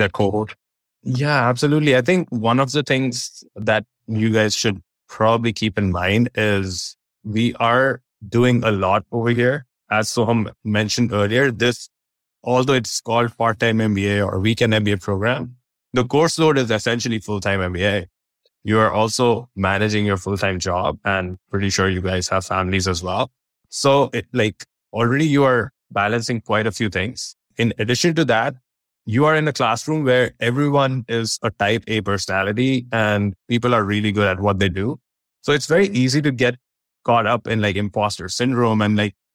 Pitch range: 100-125 Hz